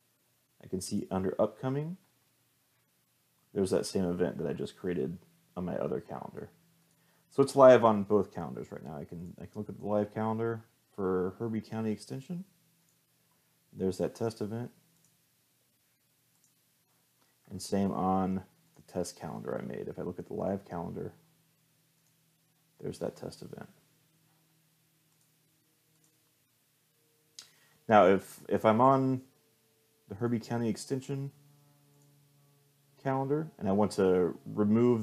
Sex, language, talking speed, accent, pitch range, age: male, English, 130 wpm, American, 100-145 Hz, 30-49